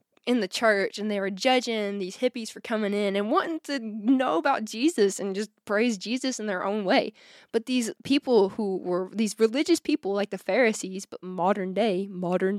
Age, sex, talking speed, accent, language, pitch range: 20-39, female, 195 wpm, American, English, 200-255 Hz